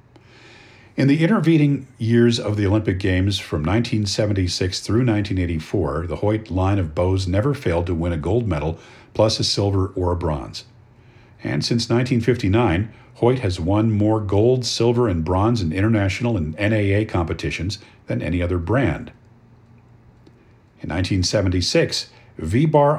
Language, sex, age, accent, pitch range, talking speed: English, male, 50-69, American, 95-120 Hz, 140 wpm